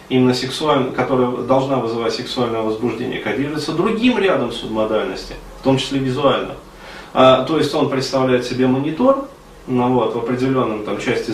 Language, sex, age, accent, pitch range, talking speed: Russian, male, 20-39, native, 120-150 Hz, 145 wpm